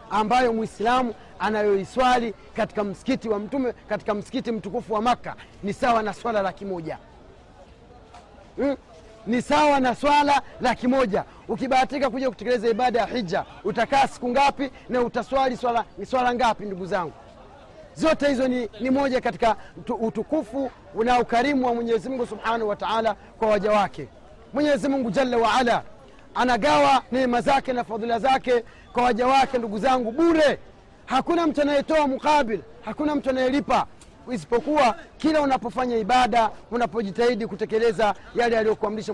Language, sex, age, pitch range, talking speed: Swahili, male, 40-59, 215-260 Hz, 130 wpm